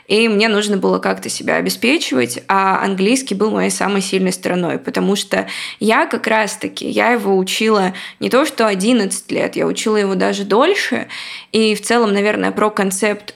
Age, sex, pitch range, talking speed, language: 20-39, female, 195-230 Hz, 170 wpm, Russian